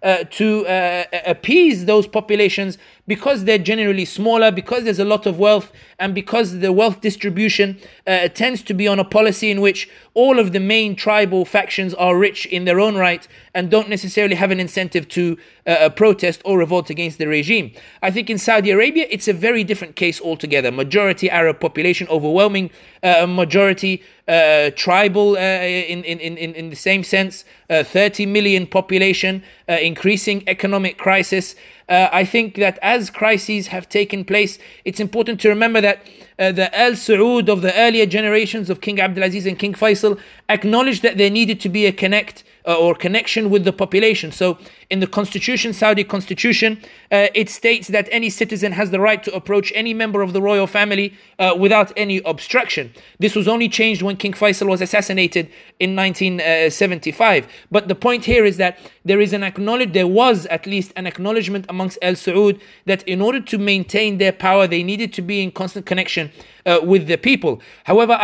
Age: 30-49